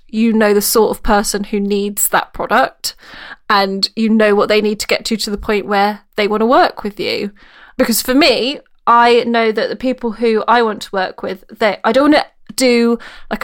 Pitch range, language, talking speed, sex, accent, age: 205-245 Hz, English, 225 wpm, female, British, 20-39